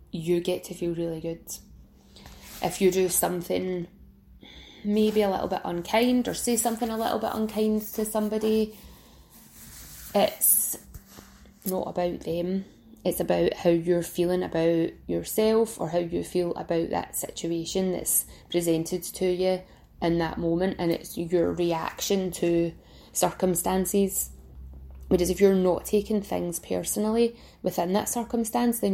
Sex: female